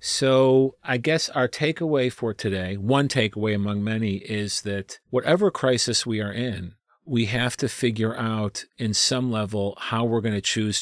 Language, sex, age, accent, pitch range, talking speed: English, male, 40-59, American, 110-140 Hz, 170 wpm